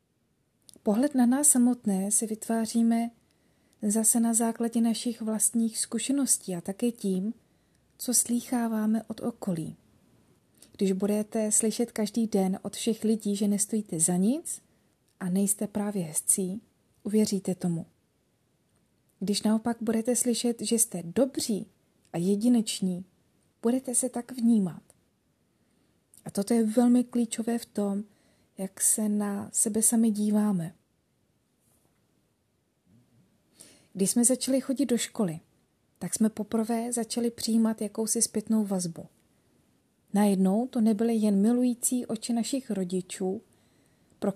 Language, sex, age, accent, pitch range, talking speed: Czech, female, 30-49, native, 195-235 Hz, 115 wpm